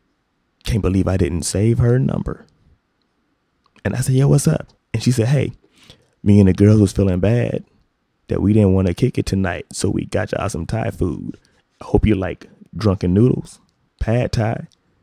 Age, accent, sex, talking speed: 20-39, American, male, 190 wpm